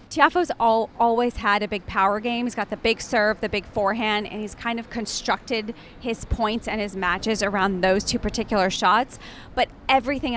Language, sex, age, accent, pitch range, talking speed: English, female, 30-49, American, 200-235 Hz, 190 wpm